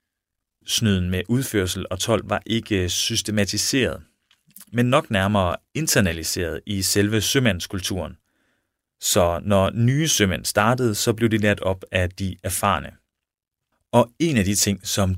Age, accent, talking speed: 30-49, native, 135 wpm